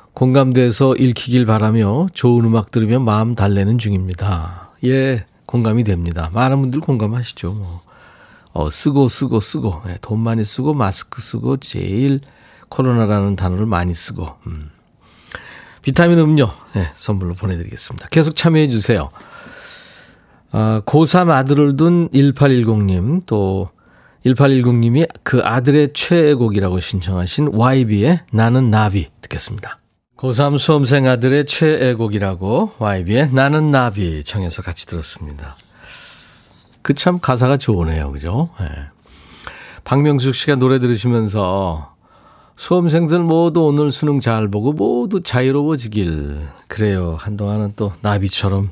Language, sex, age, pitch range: Korean, male, 40-59, 95-135 Hz